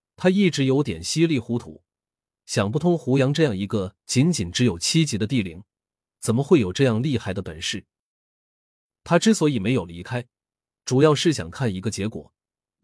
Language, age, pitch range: Chinese, 30-49, 100-145 Hz